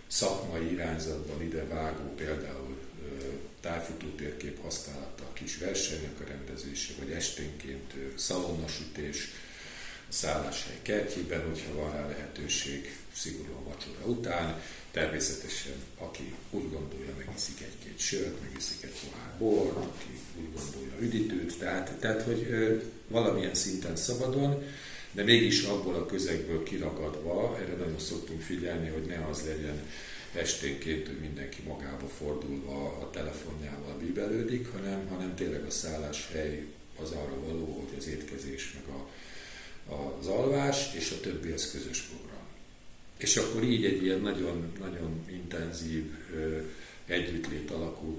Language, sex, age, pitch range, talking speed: Hungarian, male, 50-69, 70-90 Hz, 125 wpm